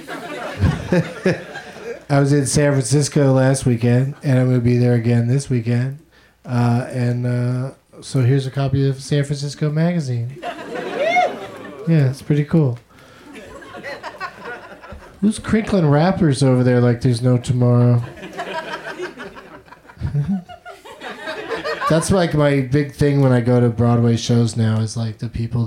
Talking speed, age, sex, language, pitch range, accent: 130 wpm, 30-49, male, English, 120-140 Hz, American